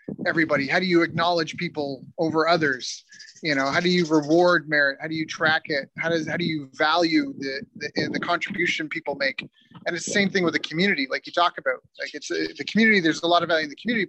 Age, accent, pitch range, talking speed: 30-49, American, 150-180 Hz, 240 wpm